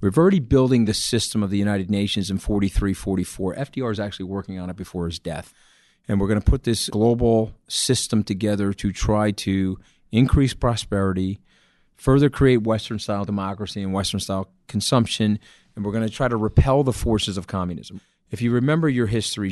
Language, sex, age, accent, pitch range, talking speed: English, male, 40-59, American, 95-115 Hz, 170 wpm